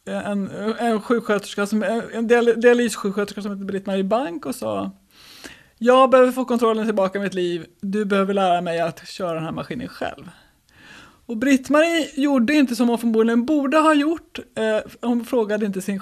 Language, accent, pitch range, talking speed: Swedish, native, 190-245 Hz, 170 wpm